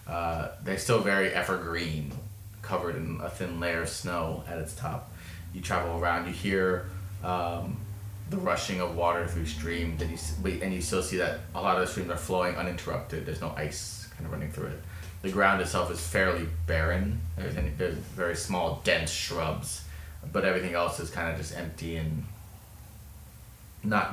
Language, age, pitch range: English, 30-49, 85-105 Hz